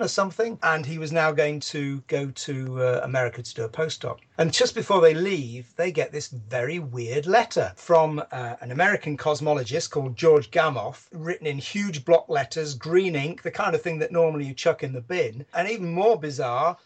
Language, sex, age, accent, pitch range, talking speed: English, male, 40-59, British, 125-170 Hz, 205 wpm